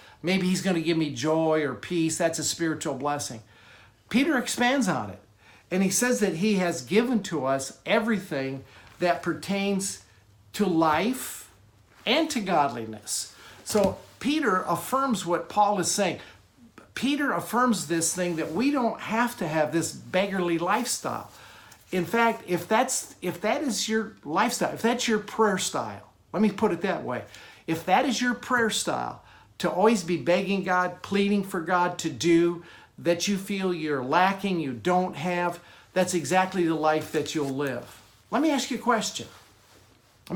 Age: 50-69